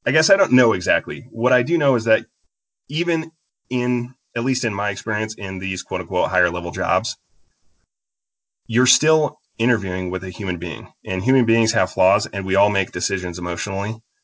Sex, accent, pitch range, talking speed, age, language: male, American, 100-125 Hz, 180 wpm, 30-49, English